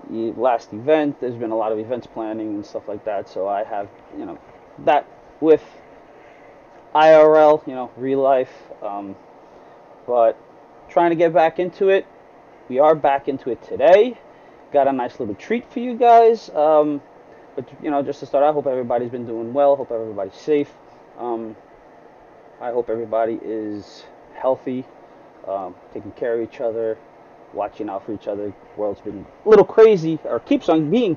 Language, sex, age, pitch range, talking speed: English, male, 20-39, 115-155 Hz, 175 wpm